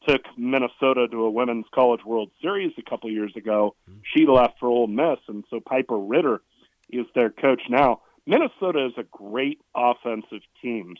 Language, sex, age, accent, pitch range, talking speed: English, male, 40-59, American, 115-140 Hz, 170 wpm